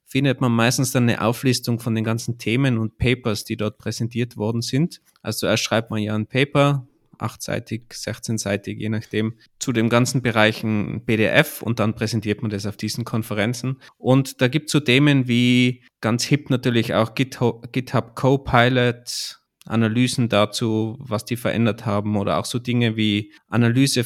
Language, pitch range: German, 110-130 Hz